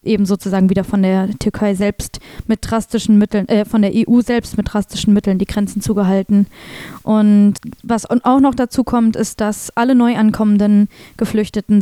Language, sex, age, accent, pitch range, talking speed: German, female, 20-39, German, 205-230 Hz, 170 wpm